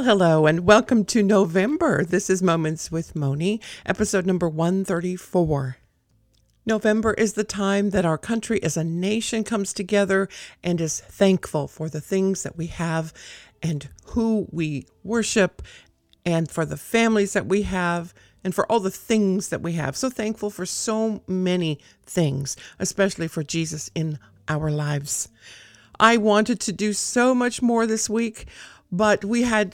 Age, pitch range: 50-69, 155-215 Hz